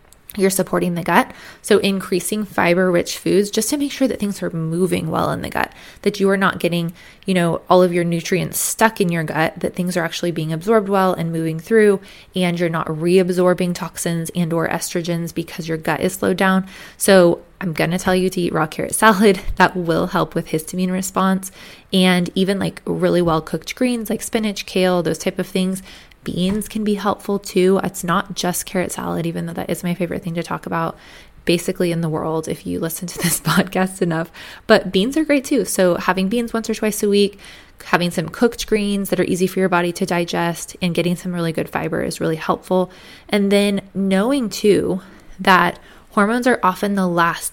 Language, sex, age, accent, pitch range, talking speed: English, female, 20-39, American, 170-200 Hz, 210 wpm